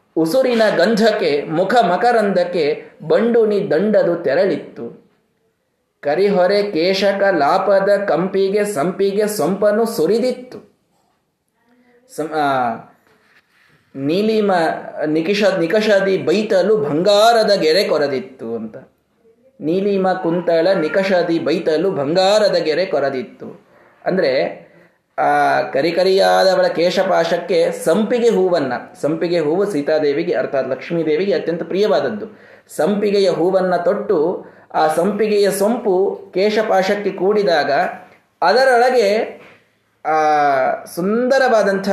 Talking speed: 70 wpm